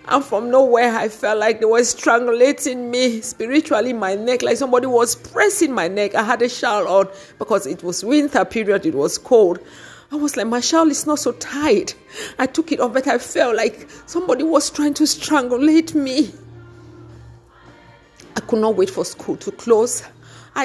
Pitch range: 210-255 Hz